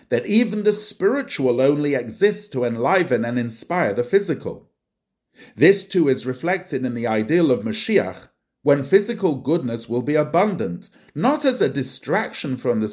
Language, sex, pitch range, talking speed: English, male, 125-180 Hz, 155 wpm